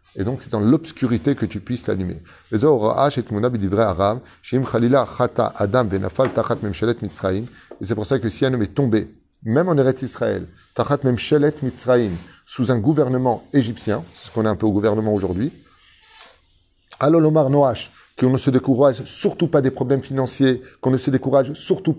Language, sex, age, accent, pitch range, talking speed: French, male, 30-49, French, 110-135 Hz, 135 wpm